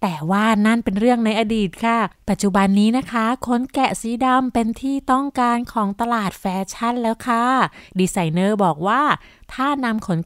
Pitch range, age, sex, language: 180-235 Hz, 20-39, female, Thai